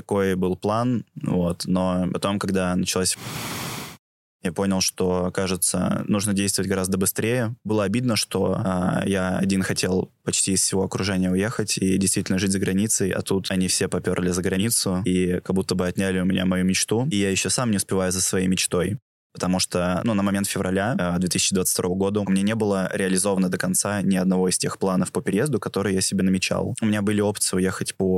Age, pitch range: 20-39, 95-100 Hz